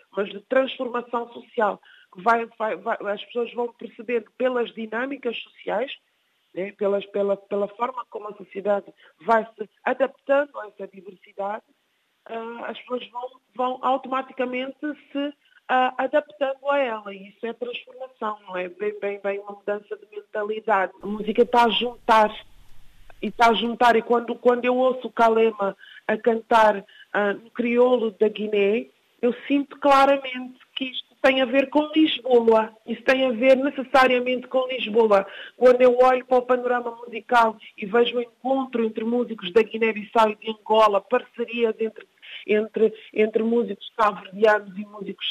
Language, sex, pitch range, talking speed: Portuguese, female, 210-255 Hz, 160 wpm